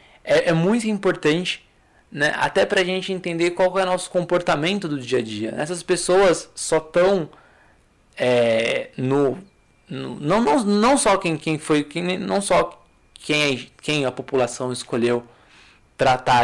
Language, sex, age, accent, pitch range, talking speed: Portuguese, male, 20-39, Brazilian, 125-170 Hz, 150 wpm